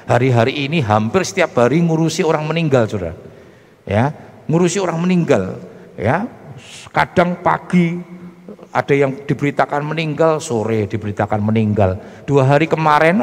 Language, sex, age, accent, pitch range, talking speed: Indonesian, male, 50-69, native, 110-150 Hz, 120 wpm